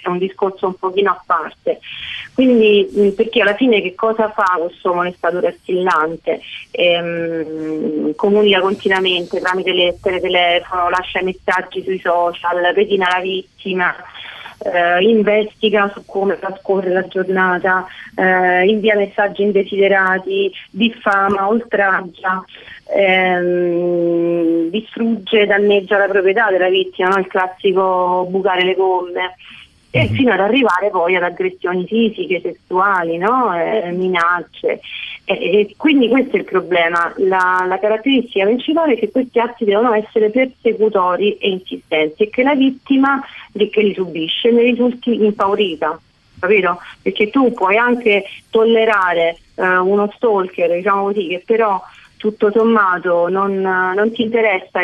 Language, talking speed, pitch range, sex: Italian, 135 wpm, 180-215 Hz, female